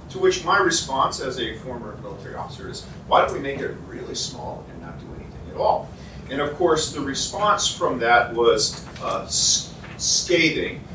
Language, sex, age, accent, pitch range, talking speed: English, male, 40-59, American, 120-145 Hz, 185 wpm